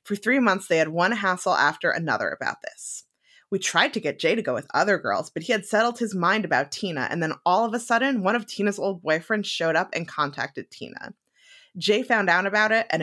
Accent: American